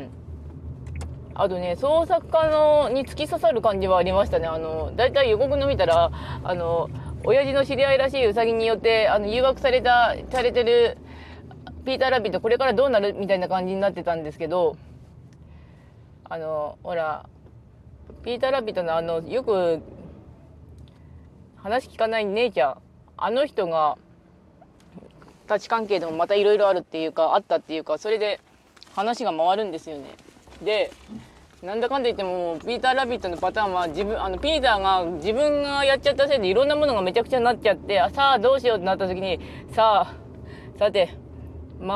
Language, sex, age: Japanese, female, 20-39